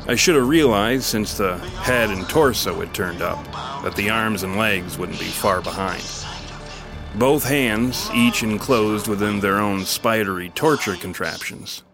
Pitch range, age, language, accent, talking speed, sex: 95-125 Hz, 40-59, English, American, 155 wpm, male